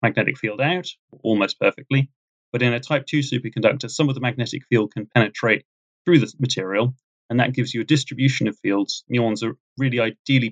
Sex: male